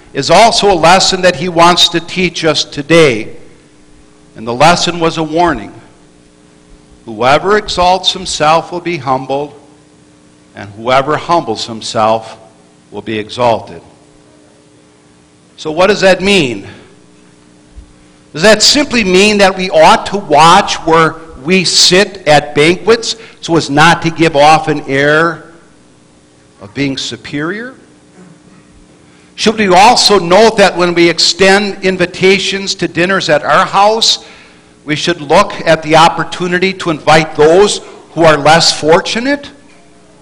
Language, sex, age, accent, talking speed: English, male, 60-79, American, 130 wpm